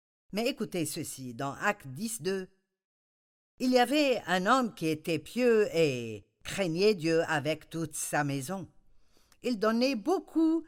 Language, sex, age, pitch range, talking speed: French, female, 50-69, 155-240 Hz, 140 wpm